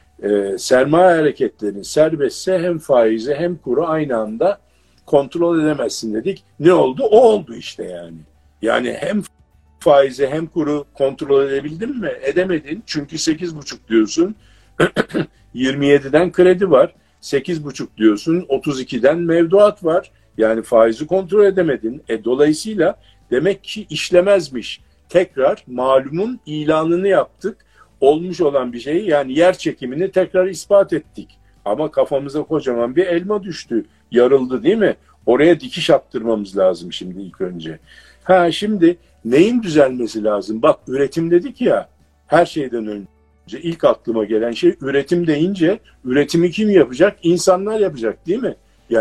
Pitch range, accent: 115-175 Hz, native